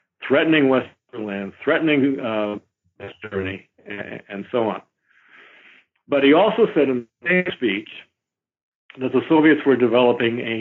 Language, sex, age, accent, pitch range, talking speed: English, male, 60-79, American, 115-140 Hz, 135 wpm